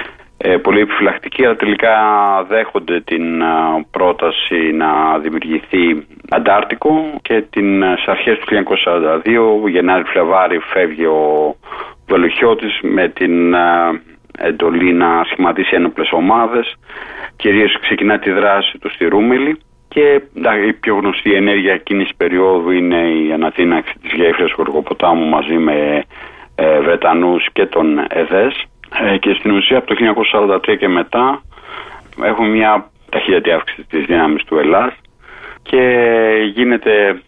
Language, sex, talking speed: Greek, male, 115 wpm